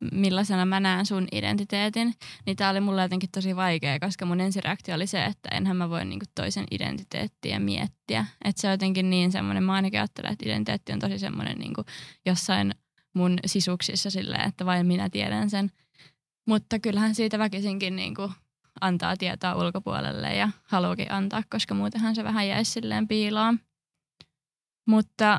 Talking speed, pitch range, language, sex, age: 155 wpm, 175-200 Hz, Finnish, female, 20-39